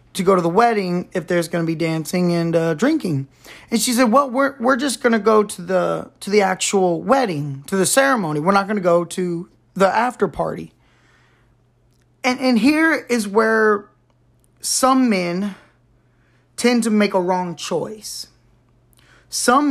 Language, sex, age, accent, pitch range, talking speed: English, male, 20-39, American, 165-210 Hz, 170 wpm